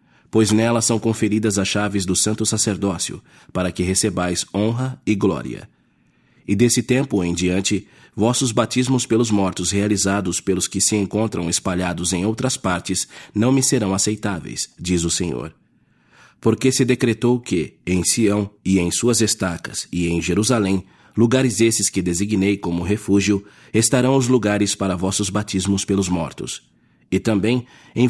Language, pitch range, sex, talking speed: English, 95-115 Hz, male, 150 wpm